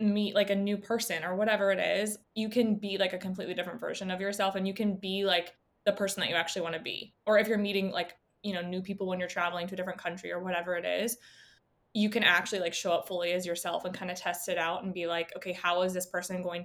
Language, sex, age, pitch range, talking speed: English, female, 20-39, 180-205 Hz, 275 wpm